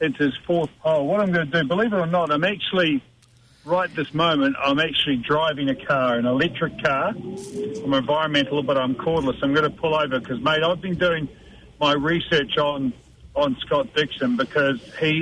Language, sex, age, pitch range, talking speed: English, male, 50-69, 135-175 Hz, 195 wpm